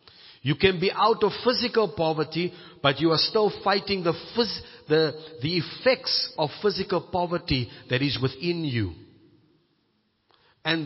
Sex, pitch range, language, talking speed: male, 130-200 Hz, English, 140 wpm